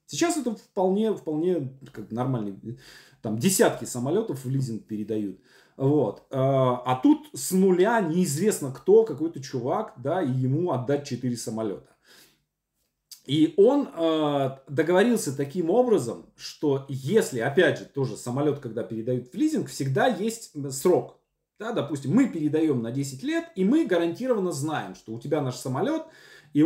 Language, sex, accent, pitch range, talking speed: Russian, male, native, 125-190 Hz, 130 wpm